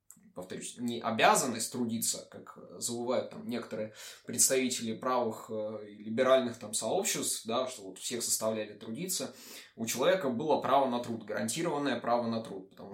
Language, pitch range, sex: Russian, 110-130 Hz, male